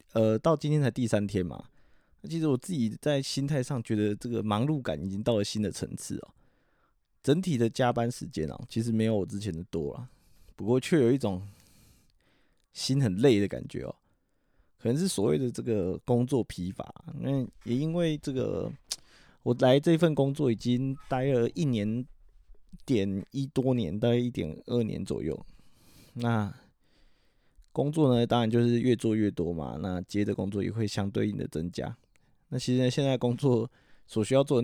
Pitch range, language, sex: 100-130 Hz, Chinese, male